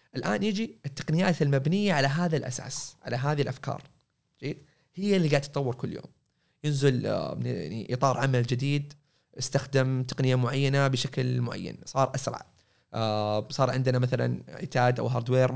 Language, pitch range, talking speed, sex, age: Arabic, 125-150 Hz, 130 wpm, male, 20-39